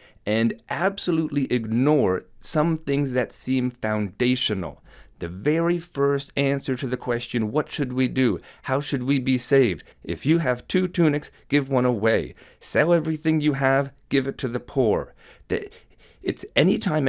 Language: English